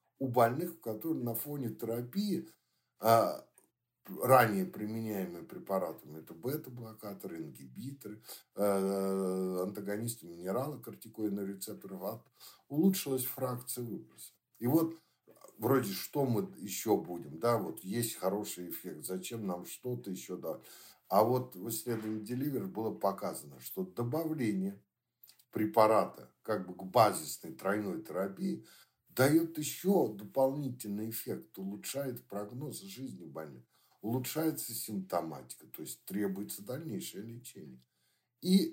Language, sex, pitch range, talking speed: Russian, male, 105-130 Hz, 110 wpm